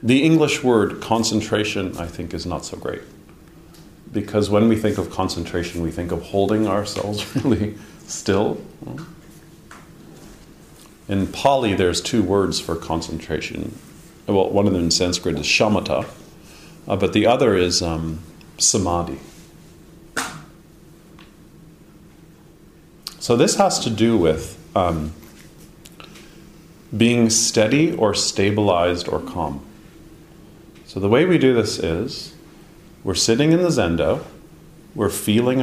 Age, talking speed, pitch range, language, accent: 40-59, 120 wpm, 90-145 Hz, English, American